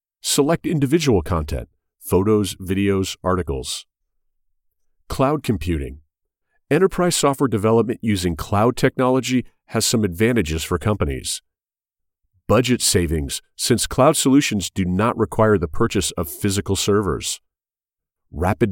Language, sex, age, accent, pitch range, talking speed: English, male, 40-59, American, 90-120 Hz, 105 wpm